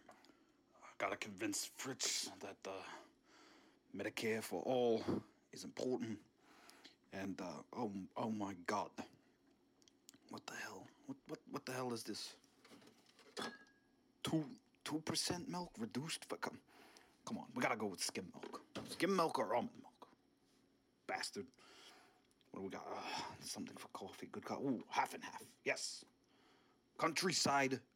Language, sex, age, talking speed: English, male, 30-49, 135 wpm